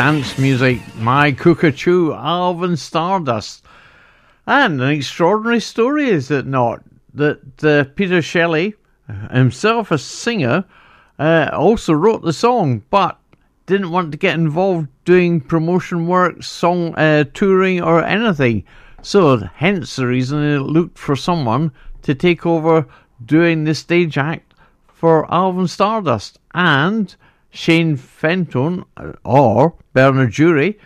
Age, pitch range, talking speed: 60-79, 145-195 Hz, 125 wpm